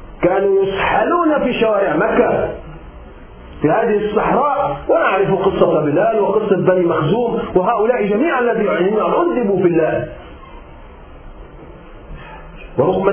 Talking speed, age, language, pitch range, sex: 95 wpm, 40-59, Arabic, 190-255 Hz, male